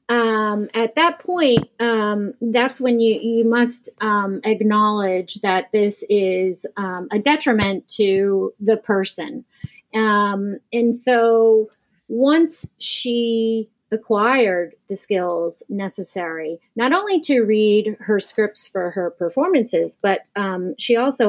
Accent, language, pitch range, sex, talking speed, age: American, English, 195-240 Hz, female, 120 wpm, 30-49